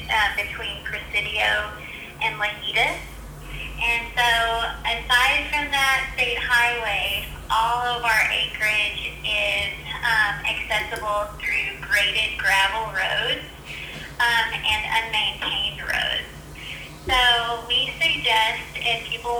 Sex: female